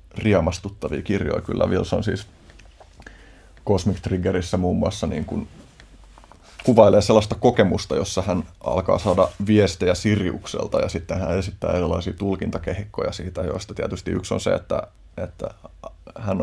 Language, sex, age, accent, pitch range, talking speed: Finnish, male, 30-49, native, 85-100 Hz, 130 wpm